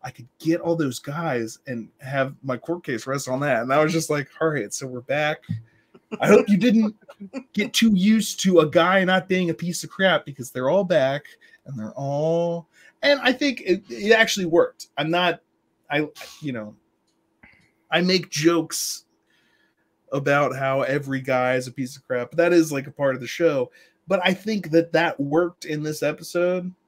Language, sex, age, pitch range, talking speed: English, male, 20-39, 135-175 Hz, 200 wpm